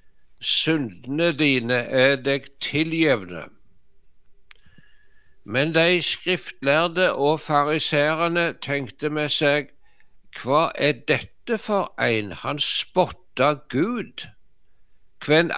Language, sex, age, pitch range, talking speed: English, male, 60-79, 125-160 Hz, 90 wpm